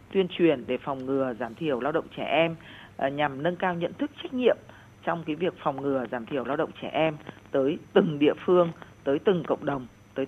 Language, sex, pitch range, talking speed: Vietnamese, female, 130-180 Hz, 230 wpm